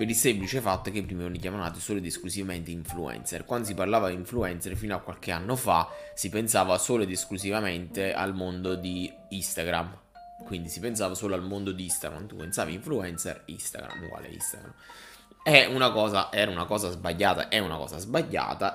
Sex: male